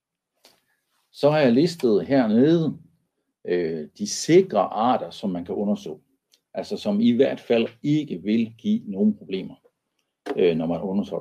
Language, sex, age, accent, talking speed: Danish, male, 60-79, native, 145 wpm